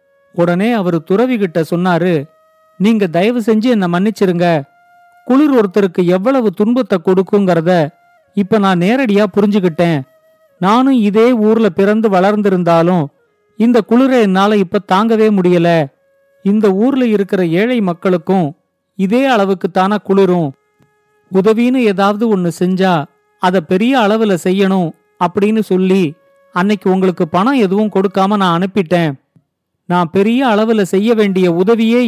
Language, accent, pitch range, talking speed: Tamil, native, 180-230 Hz, 110 wpm